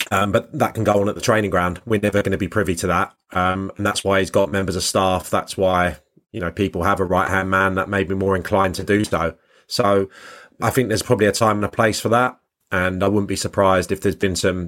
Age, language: 30-49, English